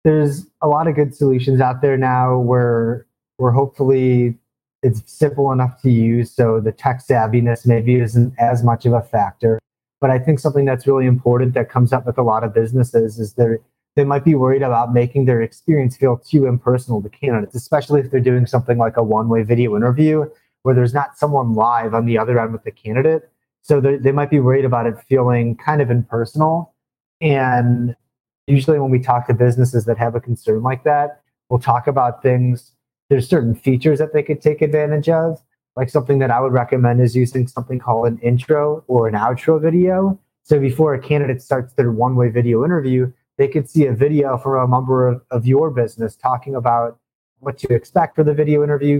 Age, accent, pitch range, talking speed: 30-49, American, 120-145 Hz, 200 wpm